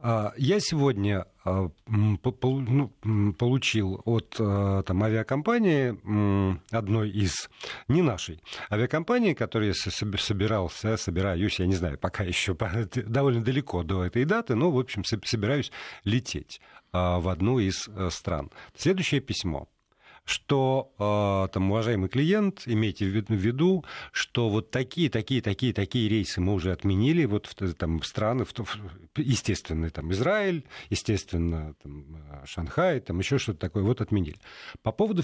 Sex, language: male, Russian